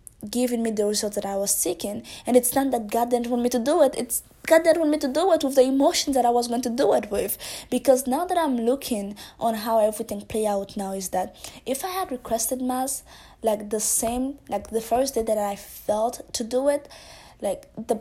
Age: 20-39